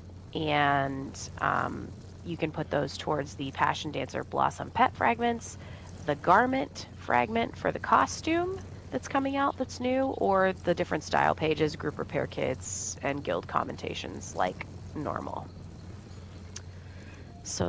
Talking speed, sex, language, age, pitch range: 130 wpm, female, English, 30-49, 95-155 Hz